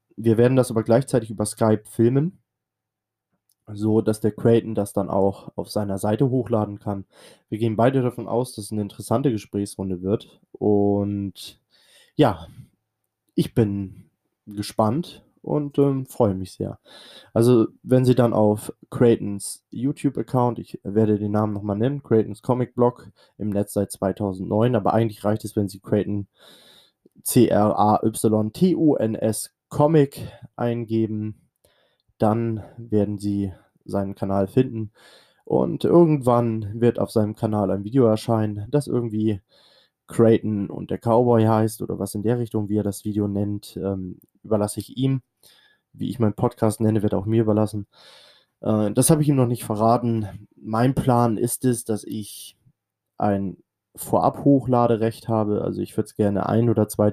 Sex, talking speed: male, 150 wpm